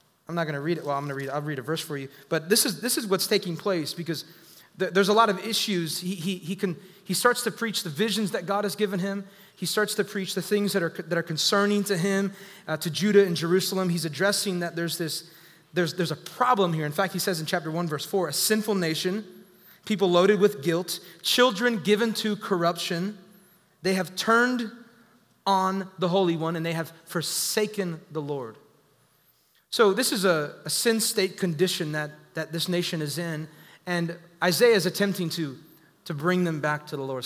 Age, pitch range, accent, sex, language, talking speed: 30-49, 160-195 Hz, American, male, English, 215 wpm